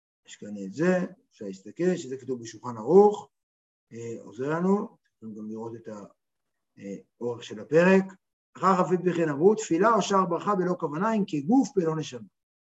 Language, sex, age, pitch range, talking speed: Hebrew, male, 60-79, 160-205 Hz, 160 wpm